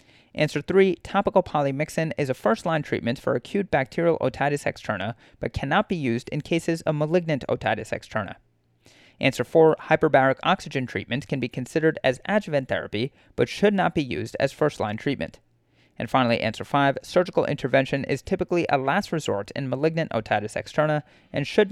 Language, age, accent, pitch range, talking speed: English, 30-49, American, 130-170 Hz, 165 wpm